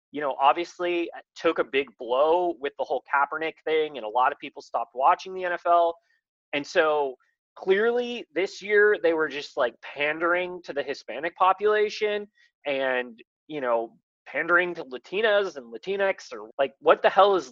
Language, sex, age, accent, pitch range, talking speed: English, male, 20-39, American, 145-210 Hz, 170 wpm